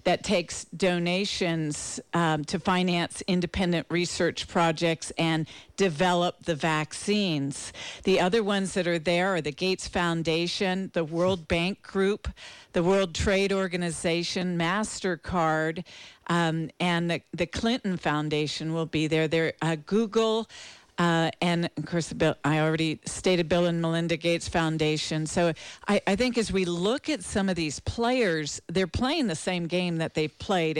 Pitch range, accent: 165-195 Hz, American